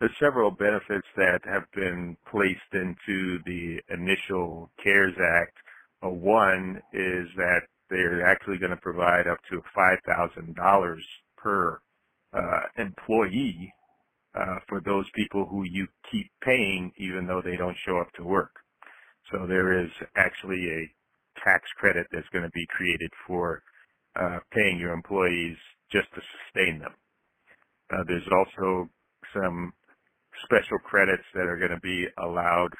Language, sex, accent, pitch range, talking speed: English, male, American, 85-95 Hz, 135 wpm